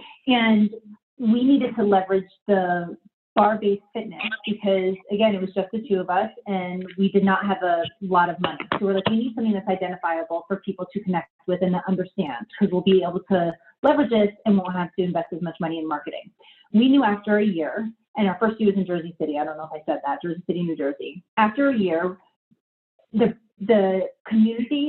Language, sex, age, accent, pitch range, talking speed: English, female, 30-49, American, 180-220 Hz, 215 wpm